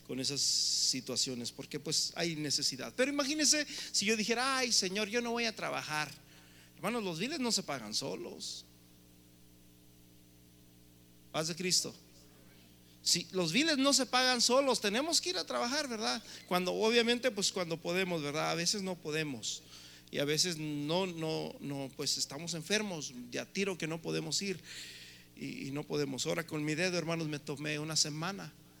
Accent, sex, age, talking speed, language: Mexican, male, 50-69, 165 wpm, Spanish